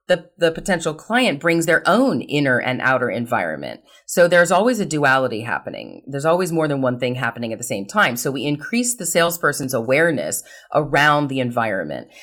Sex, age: female, 30-49